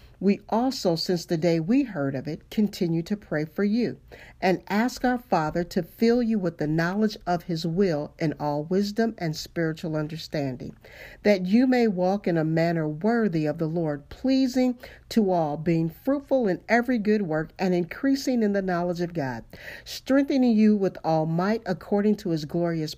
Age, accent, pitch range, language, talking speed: 50-69, American, 160-220 Hz, English, 180 wpm